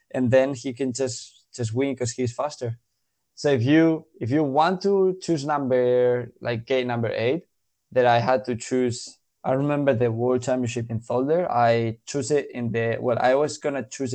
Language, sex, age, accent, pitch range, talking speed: English, male, 20-39, Spanish, 115-130 Hz, 195 wpm